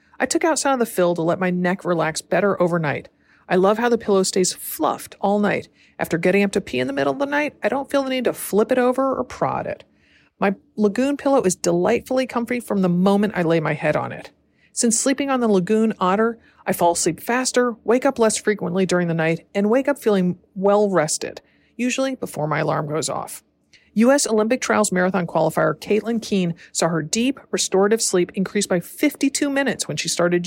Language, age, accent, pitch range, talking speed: English, 40-59, American, 175-240 Hz, 215 wpm